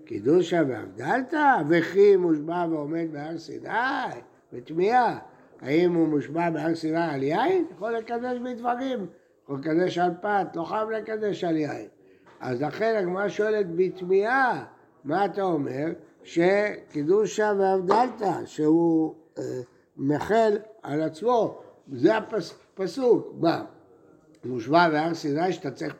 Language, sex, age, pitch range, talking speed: Hebrew, male, 60-79, 155-220 Hz, 120 wpm